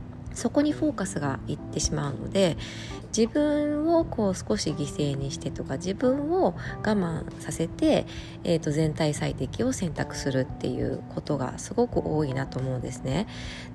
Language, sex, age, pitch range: Japanese, female, 20-39, 140-200 Hz